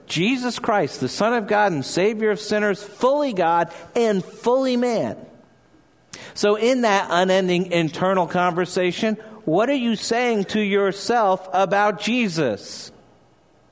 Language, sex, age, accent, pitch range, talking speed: English, male, 50-69, American, 160-205 Hz, 125 wpm